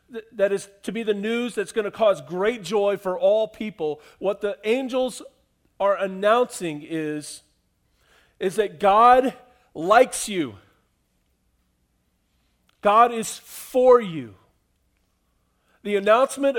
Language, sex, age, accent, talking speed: English, male, 40-59, American, 115 wpm